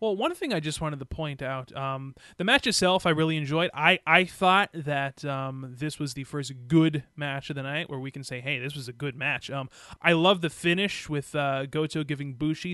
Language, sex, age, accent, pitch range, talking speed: English, male, 20-39, American, 135-170 Hz, 235 wpm